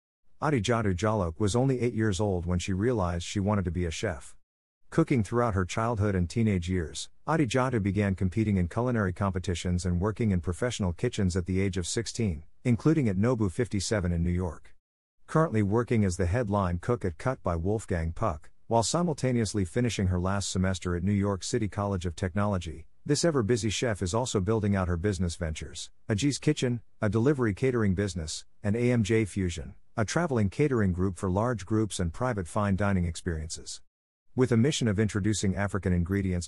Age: 50-69